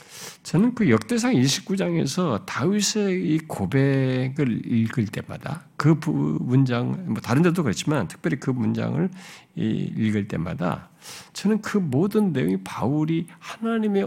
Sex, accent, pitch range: male, native, 135-190 Hz